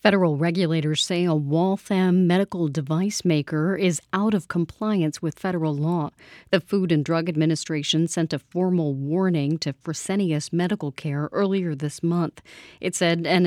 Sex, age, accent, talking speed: female, 40-59, American, 150 wpm